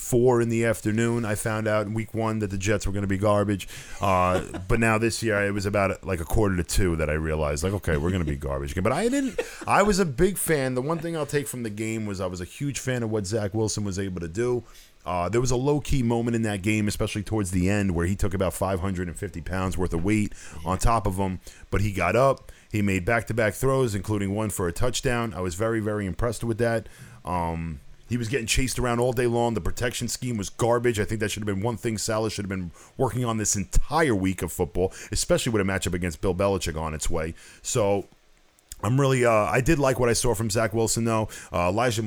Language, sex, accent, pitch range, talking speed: English, male, American, 95-120 Hz, 255 wpm